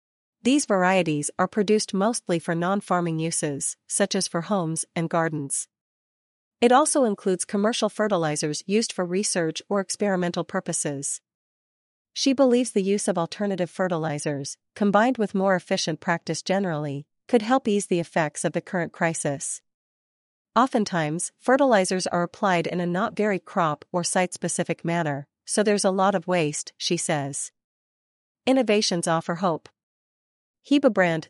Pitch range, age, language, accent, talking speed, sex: 165-205 Hz, 40-59, English, American, 135 wpm, female